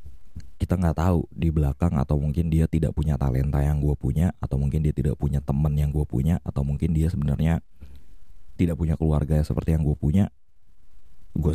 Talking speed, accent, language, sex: 180 wpm, native, Indonesian, male